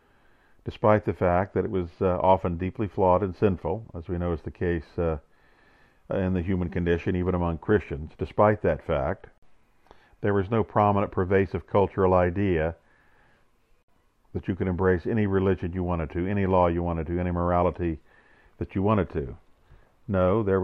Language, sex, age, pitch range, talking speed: English, male, 50-69, 85-100 Hz, 170 wpm